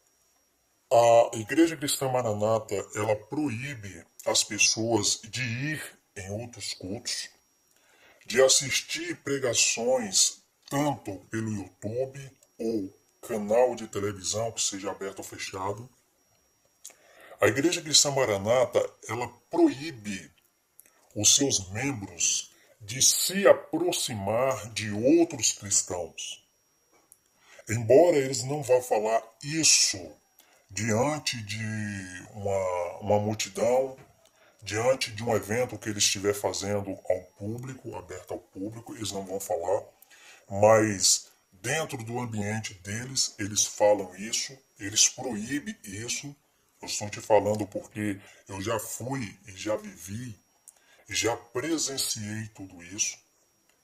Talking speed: 110 wpm